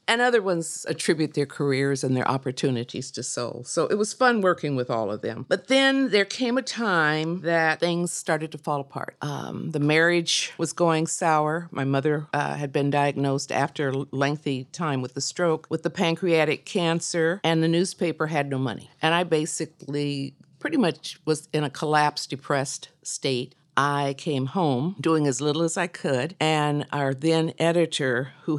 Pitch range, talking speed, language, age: 135-165 Hz, 180 wpm, English, 50-69